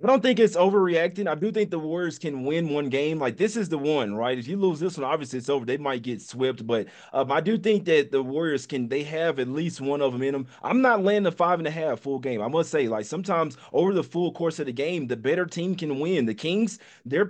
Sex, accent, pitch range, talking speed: male, American, 130-180 Hz, 280 wpm